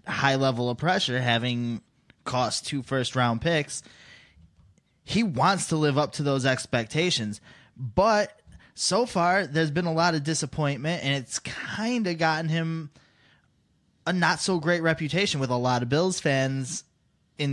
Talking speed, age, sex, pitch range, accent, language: 150 wpm, 20-39, male, 115-160 Hz, American, English